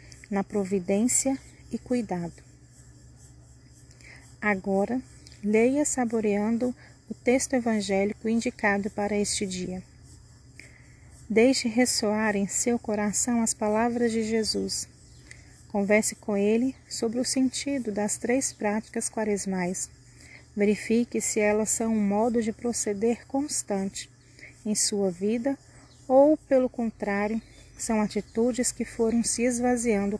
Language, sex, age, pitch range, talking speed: Portuguese, female, 30-49, 200-235 Hz, 105 wpm